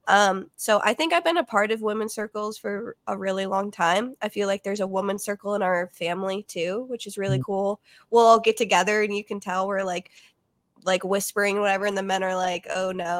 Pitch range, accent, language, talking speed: 190-215 Hz, American, English, 230 wpm